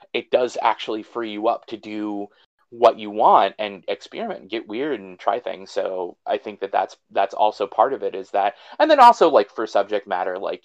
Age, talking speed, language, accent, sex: 30-49, 220 wpm, English, American, male